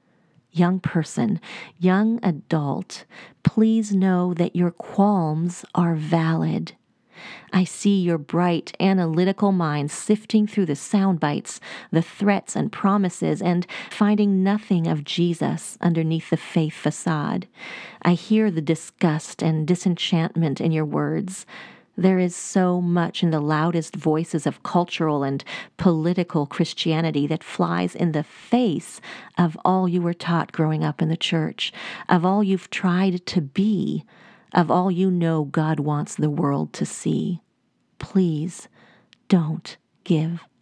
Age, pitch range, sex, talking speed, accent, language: 40-59, 160-195 Hz, female, 135 wpm, American, English